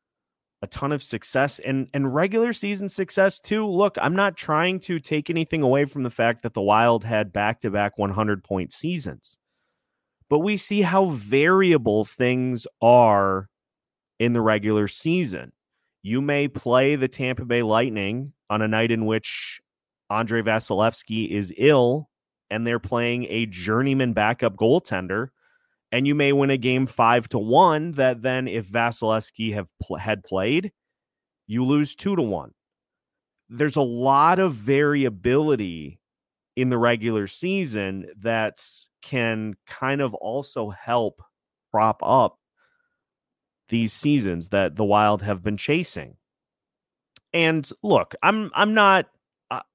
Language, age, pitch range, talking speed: English, 30-49, 110-145 Hz, 140 wpm